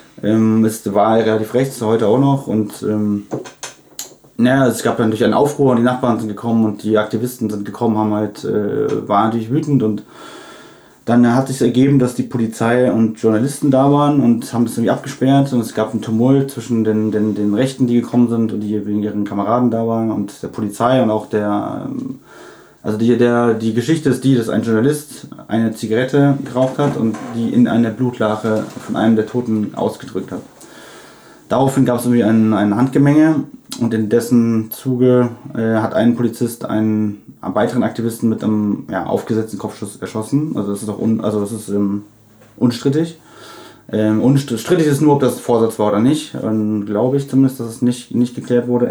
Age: 30-49